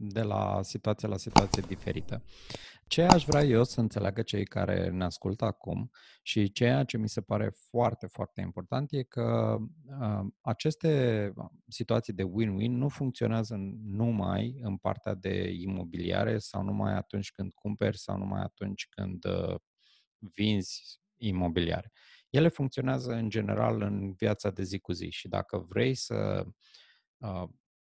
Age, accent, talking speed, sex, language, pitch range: 30-49, native, 145 wpm, male, Romanian, 100-125 Hz